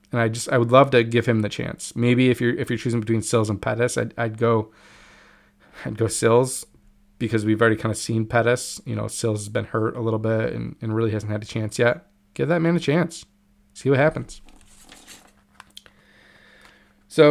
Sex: male